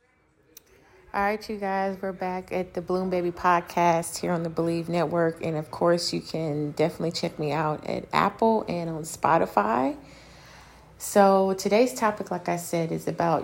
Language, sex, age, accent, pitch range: Japanese, female, 30-49, American, 160-180 Hz